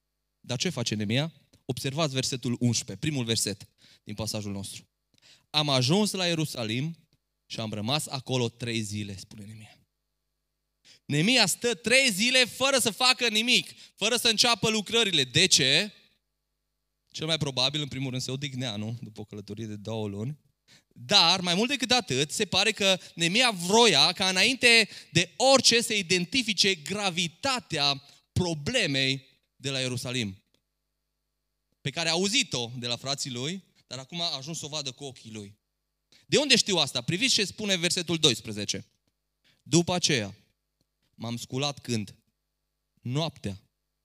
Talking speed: 145 wpm